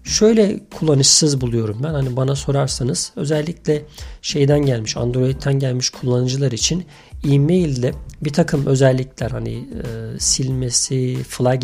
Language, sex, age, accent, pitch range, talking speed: Turkish, male, 40-59, native, 130-170 Hz, 110 wpm